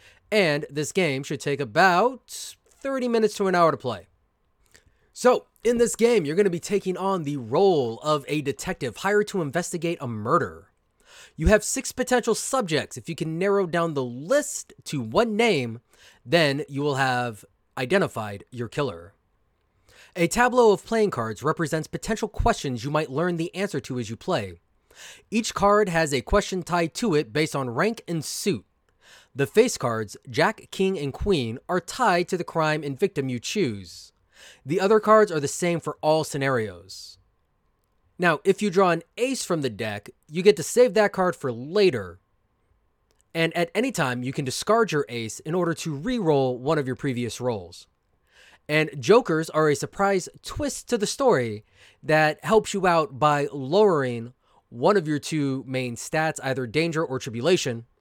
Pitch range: 125-195 Hz